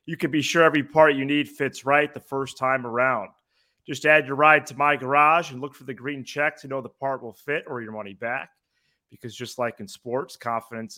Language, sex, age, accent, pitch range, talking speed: English, male, 30-49, American, 115-140 Hz, 235 wpm